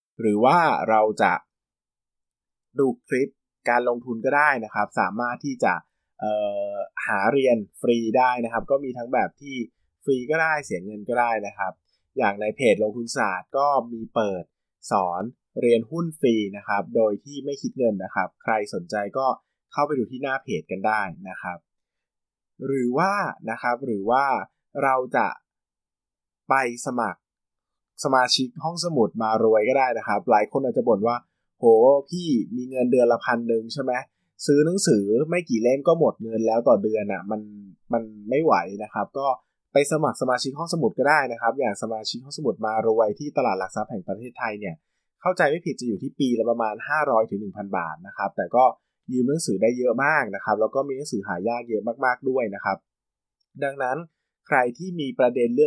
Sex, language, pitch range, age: male, Thai, 110-135 Hz, 20-39